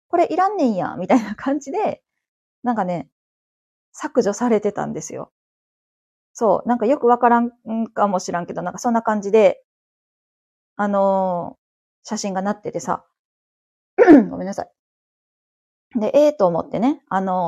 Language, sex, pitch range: Japanese, female, 185-255 Hz